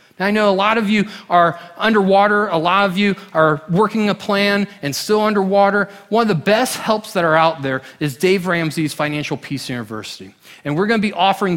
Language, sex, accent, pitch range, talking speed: English, male, American, 150-200 Hz, 205 wpm